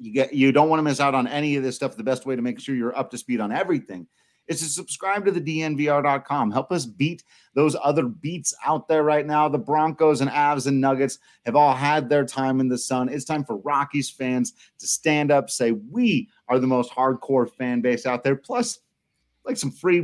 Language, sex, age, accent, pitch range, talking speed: English, male, 30-49, American, 125-155 Hz, 230 wpm